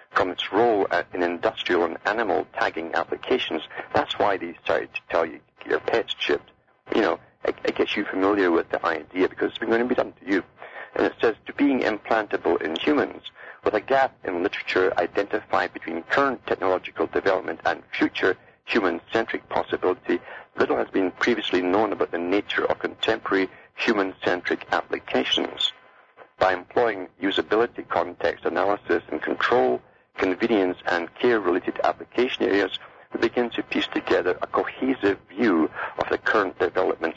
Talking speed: 155 wpm